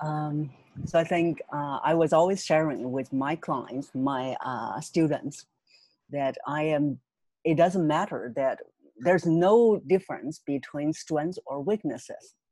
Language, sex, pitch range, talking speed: English, female, 140-175 Hz, 140 wpm